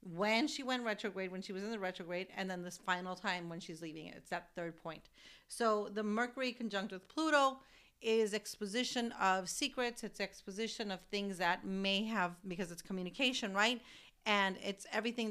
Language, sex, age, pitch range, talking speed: English, female, 40-59, 185-220 Hz, 185 wpm